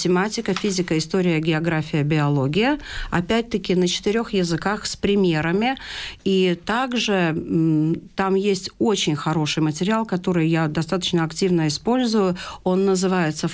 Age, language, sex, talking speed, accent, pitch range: 50-69, Russian, female, 120 wpm, native, 160-195 Hz